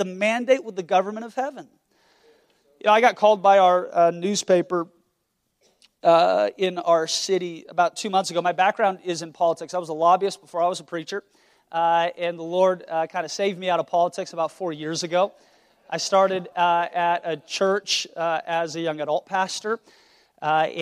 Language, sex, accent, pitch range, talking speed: English, male, American, 160-185 Hz, 195 wpm